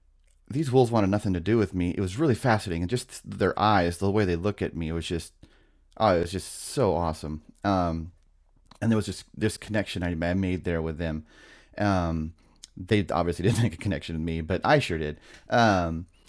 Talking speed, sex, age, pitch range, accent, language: 210 wpm, male, 30-49, 80-100 Hz, American, English